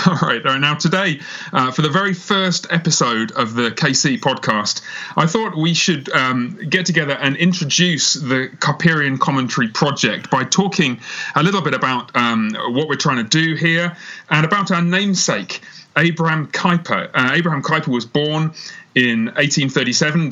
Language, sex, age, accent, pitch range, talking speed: English, male, 30-49, British, 135-180 Hz, 155 wpm